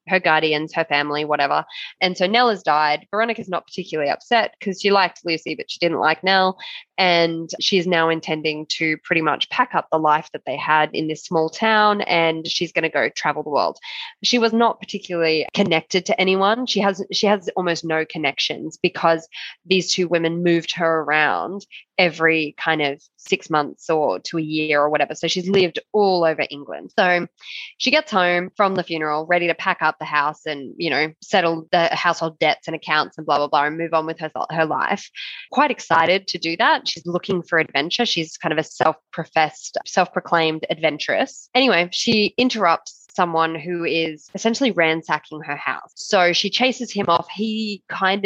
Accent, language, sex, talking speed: Australian, English, female, 195 wpm